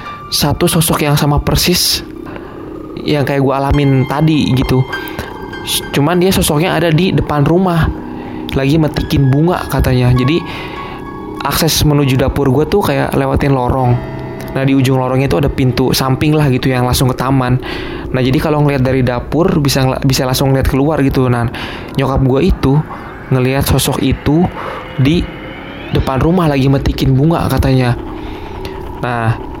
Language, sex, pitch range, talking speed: Indonesian, male, 125-150 Hz, 150 wpm